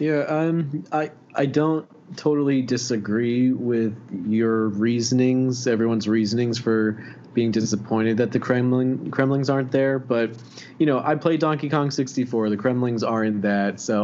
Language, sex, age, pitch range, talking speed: English, male, 20-39, 110-130 Hz, 145 wpm